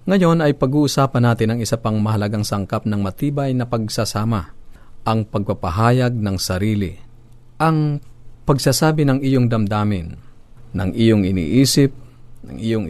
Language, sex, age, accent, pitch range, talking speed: Filipino, male, 40-59, native, 100-120 Hz, 125 wpm